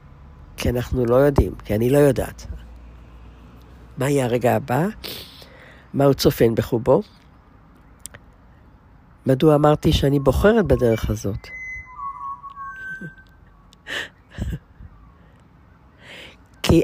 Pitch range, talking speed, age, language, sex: 110-150 Hz, 80 wpm, 60-79, Hebrew, female